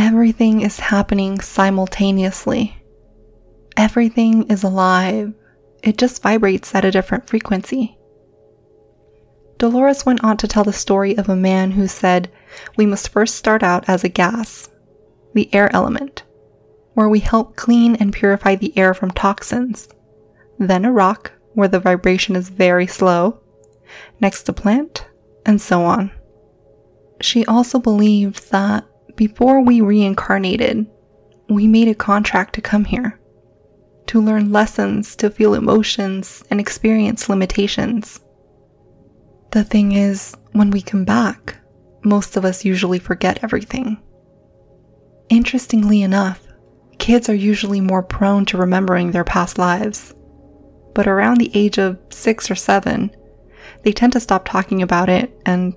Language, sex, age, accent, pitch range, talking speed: English, female, 20-39, American, 190-220 Hz, 135 wpm